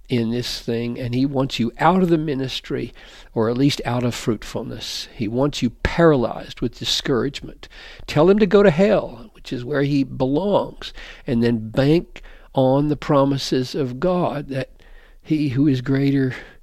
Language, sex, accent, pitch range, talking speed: English, male, American, 120-160 Hz, 170 wpm